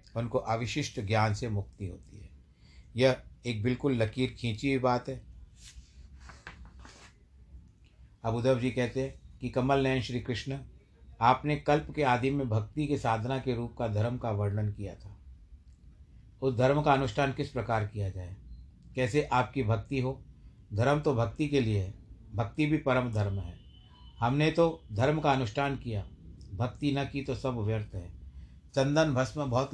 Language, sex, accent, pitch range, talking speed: Hindi, male, native, 100-135 Hz, 160 wpm